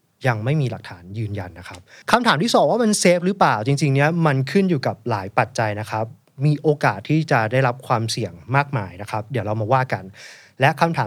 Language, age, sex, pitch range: Thai, 20-39, male, 115-150 Hz